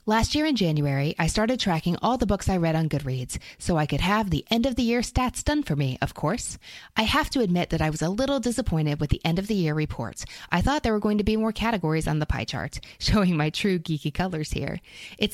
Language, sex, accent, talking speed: English, female, American, 235 wpm